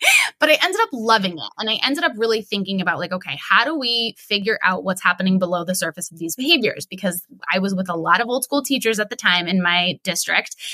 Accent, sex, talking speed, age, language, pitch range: American, female, 245 wpm, 20-39, English, 185-235 Hz